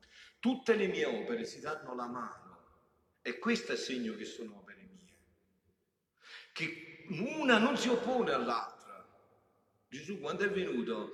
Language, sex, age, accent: Italian, male, 50-69, native